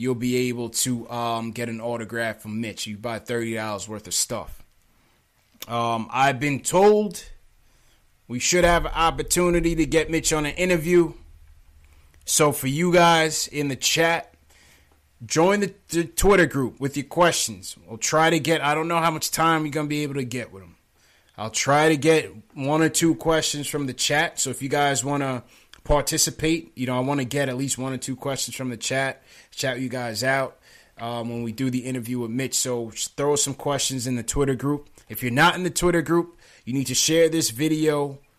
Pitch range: 115-155 Hz